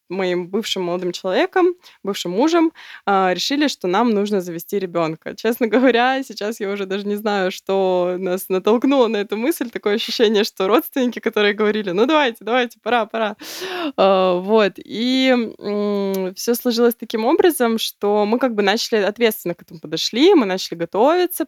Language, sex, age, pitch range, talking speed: Russian, female, 20-39, 185-235 Hz, 155 wpm